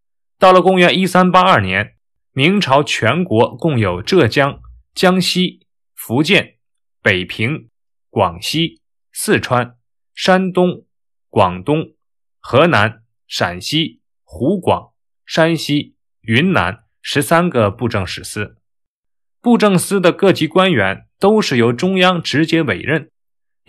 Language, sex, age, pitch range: Chinese, male, 20-39, 110-180 Hz